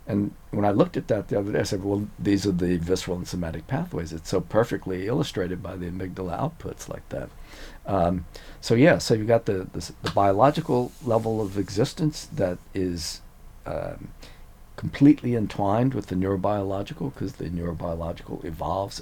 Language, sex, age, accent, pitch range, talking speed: English, male, 50-69, American, 85-105 Hz, 170 wpm